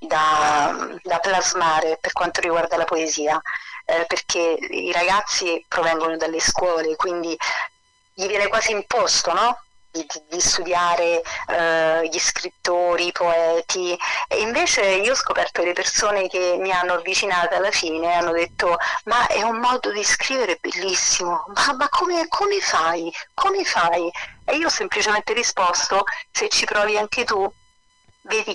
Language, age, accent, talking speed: Italian, 40-59, native, 145 wpm